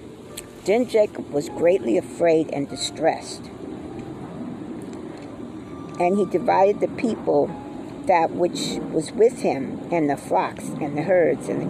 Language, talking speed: English, 130 wpm